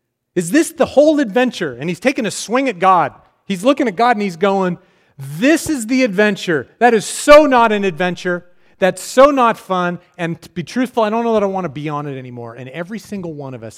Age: 40-59